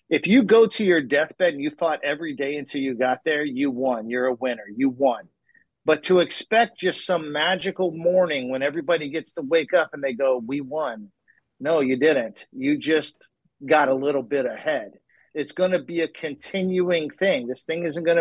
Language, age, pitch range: English, 50-69, 140-185 Hz